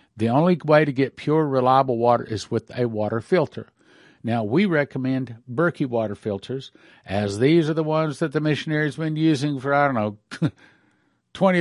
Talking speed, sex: 180 wpm, male